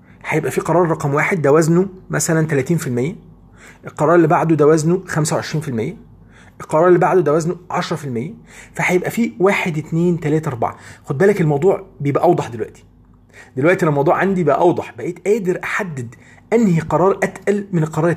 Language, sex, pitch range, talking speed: Arabic, male, 130-180 Hz, 150 wpm